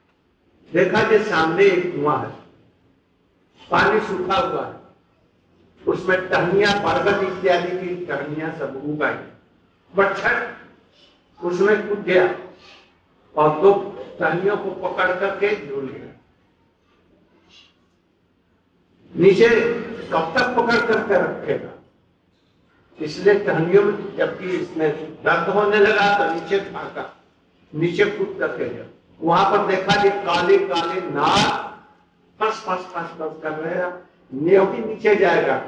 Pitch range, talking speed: 165-225 Hz, 80 wpm